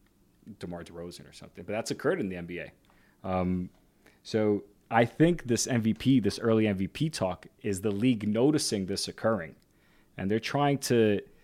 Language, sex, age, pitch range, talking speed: English, male, 30-49, 95-115 Hz, 155 wpm